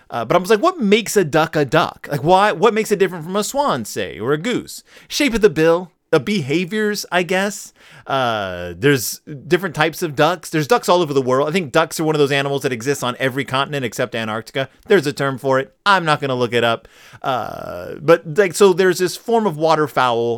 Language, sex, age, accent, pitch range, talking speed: English, male, 30-49, American, 135-200 Hz, 240 wpm